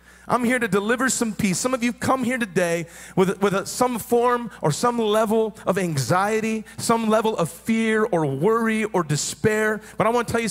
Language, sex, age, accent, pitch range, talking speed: English, male, 30-49, American, 180-235 Hz, 200 wpm